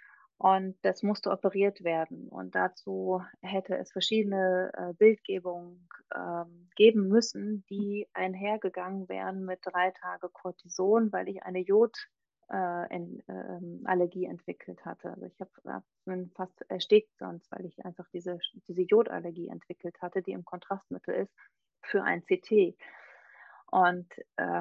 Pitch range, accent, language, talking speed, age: 175-205 Hz, German, German, 125 wpm, 30-49